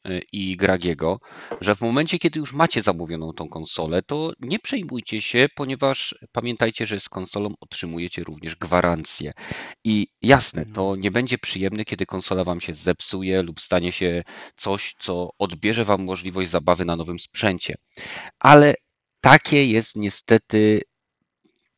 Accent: native